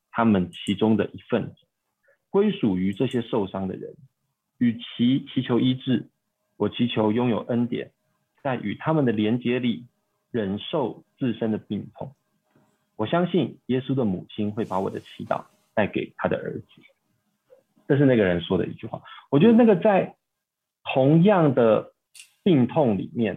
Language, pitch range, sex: Chinese, 105-135 Hz, male